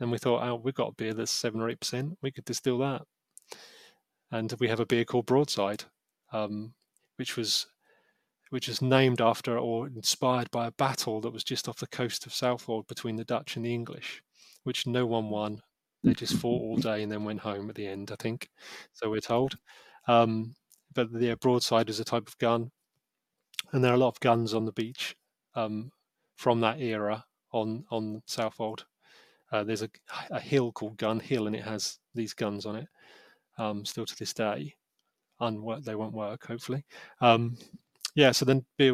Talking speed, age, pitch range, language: 195 wpm, 30-49, 115-135 Hz, English